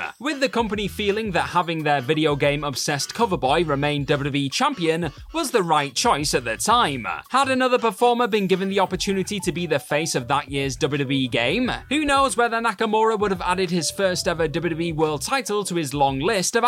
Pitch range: 150-225 Hz